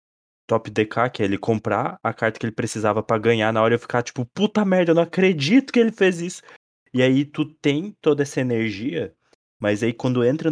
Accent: Brazilian